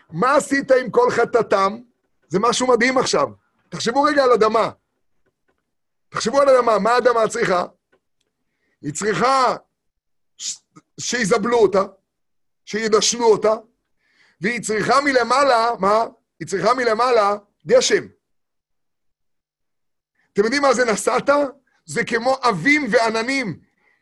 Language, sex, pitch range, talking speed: Hebrew, male, 215-260 Hz, 105 wpm